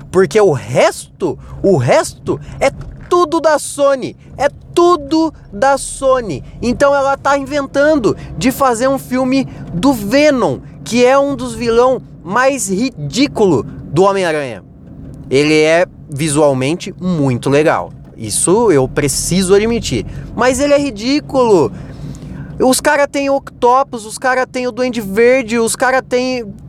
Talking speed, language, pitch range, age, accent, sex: 135 wpm, Portuguese, 190-270 Hz, 20-39, Brazilian, male